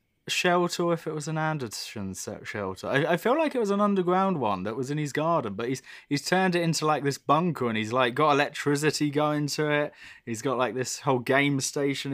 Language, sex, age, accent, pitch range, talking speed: English, male, 20-39, British, 120-150 Hz, 220 wpm